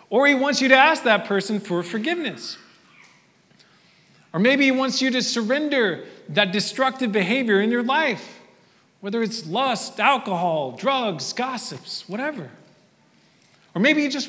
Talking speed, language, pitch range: 145 wpm, English, 160-220 Hz